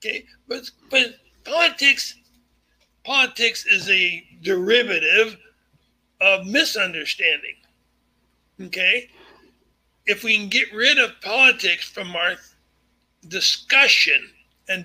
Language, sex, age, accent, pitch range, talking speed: English, male, 60-79, American, 195-260 Hz, 90 wpm